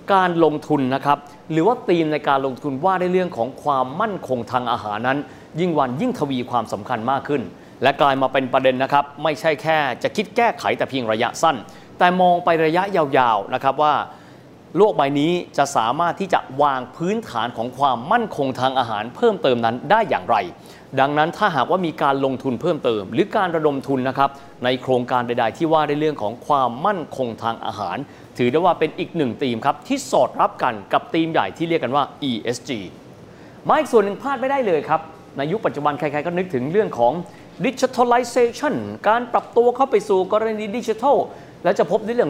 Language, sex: Thai, male